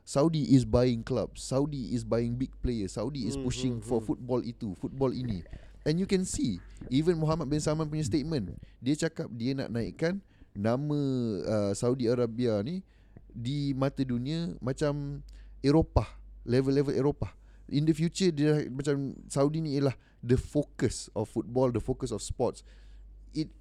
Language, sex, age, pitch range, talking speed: Malay, male, 30-49, 105-145 Hz, 155 wpm